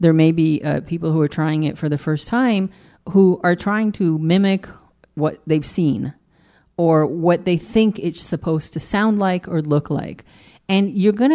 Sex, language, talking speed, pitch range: female, English, 190 wpm, 155-190 Hz